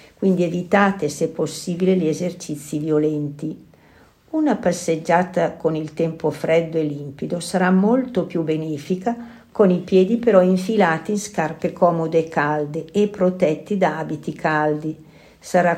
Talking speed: 135 wpm